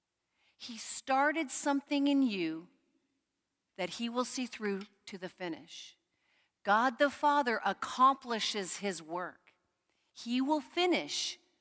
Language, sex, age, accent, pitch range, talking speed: English, female, 40-59, American, 210-290 Hz, 115 wpm